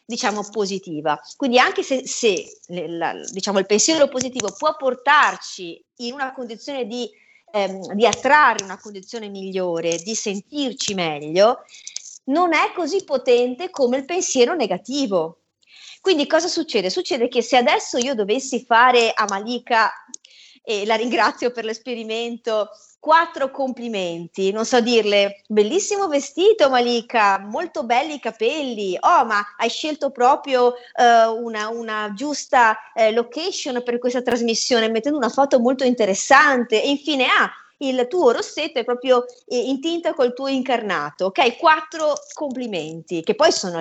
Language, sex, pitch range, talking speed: Italian, female, 210-290 Hz, 140 wpm